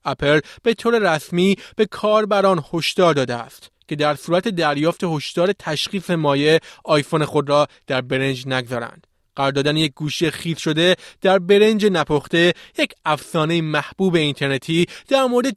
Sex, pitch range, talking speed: male, 145-195 Hz, 145 wpm